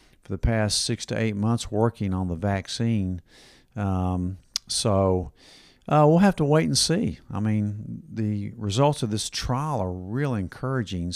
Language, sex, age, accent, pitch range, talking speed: English, male, 50-69, American, 95-110 Hz, 160 wpm